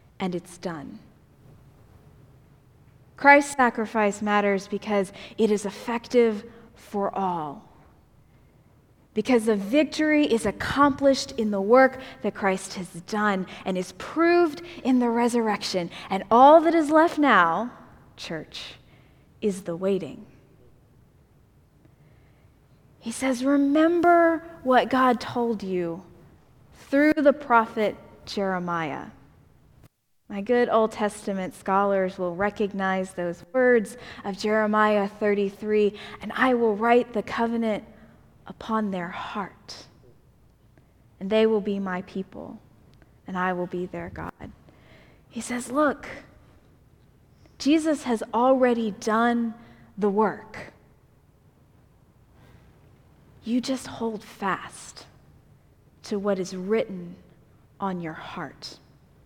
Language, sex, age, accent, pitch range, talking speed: English, female, 20-39, American, 190-245 Hz, 105 wpm